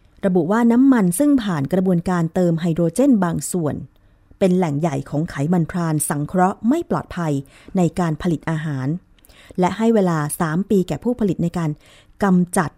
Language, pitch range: Thai, 155-195 Hz